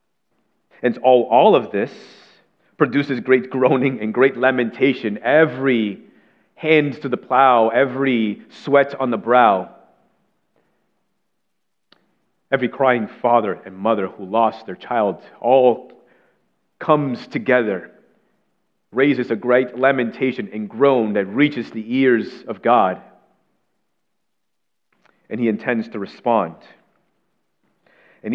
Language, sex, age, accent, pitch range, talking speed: English, male, 30-49, American, 110-135 Hz, 110 wpm